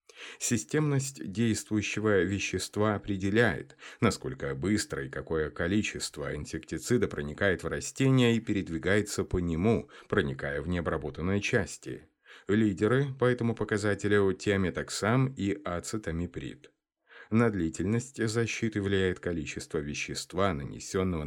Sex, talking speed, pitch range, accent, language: male, 100 wpm, 80-115 Hz, native, Russian